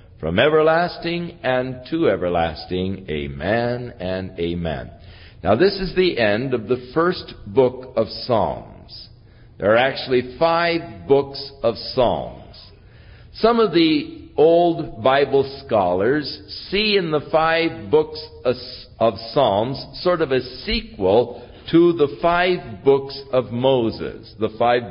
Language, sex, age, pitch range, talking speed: English, male, 60-79, 115-170 Hz, 125 wpm